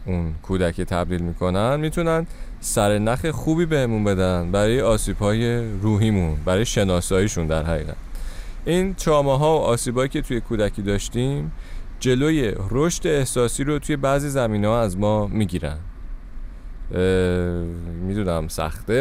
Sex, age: male, 30-49